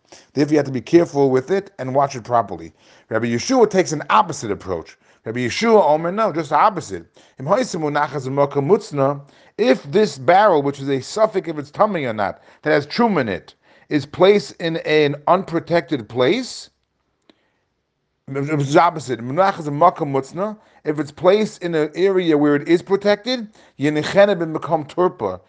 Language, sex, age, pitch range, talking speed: English, male, 40-59, 140-190 Hz, 145 wpm